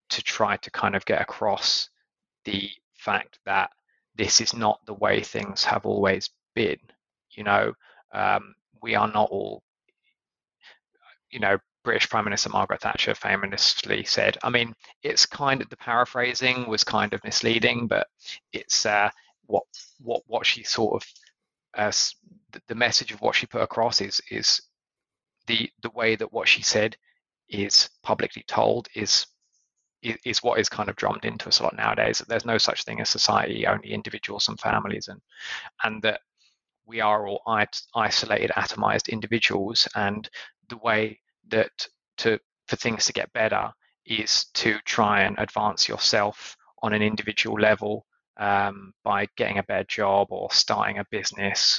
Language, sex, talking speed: English, male, 160 wpm